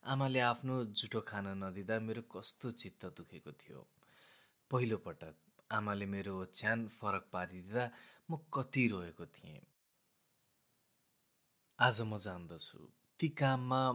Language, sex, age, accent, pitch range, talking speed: Hindi, male, 30-49, native, 95-125 Hz, 100 wpm